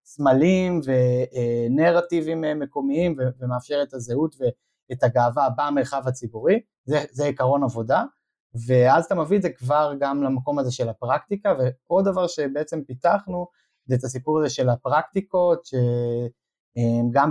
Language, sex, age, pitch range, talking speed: Hebrew, male, 20-39, 125-155 Hz, 125 wpm